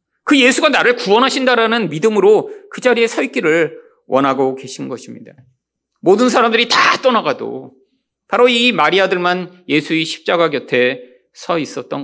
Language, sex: Korean, male